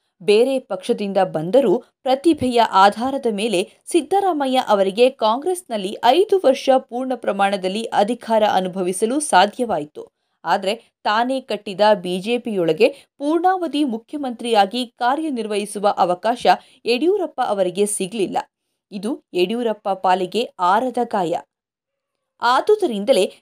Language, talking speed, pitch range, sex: Kannada, 85 wpm, 205-275 Hz, female